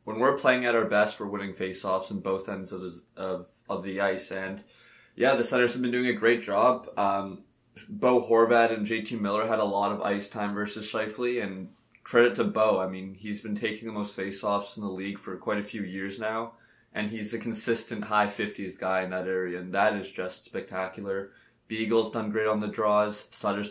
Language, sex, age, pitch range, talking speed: English, male, 20-39, 100-115 Hz, 215 wpm